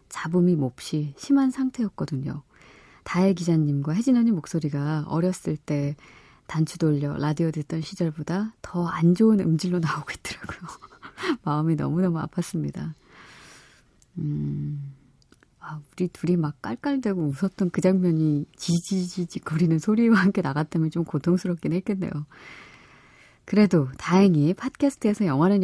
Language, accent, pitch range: Korean, native, 150-195 Hz